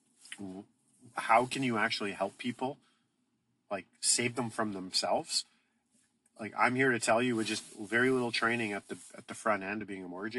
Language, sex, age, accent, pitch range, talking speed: English, male, 40-59, American, 100-120 Hz, 185 wpm